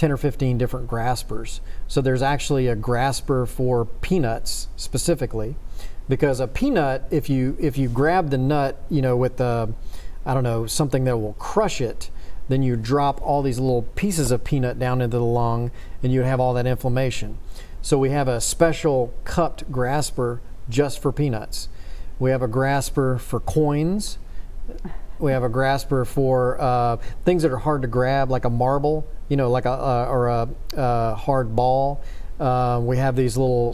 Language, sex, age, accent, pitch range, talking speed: English, male, 40-59, American, 120-140 Hz, 180 wpm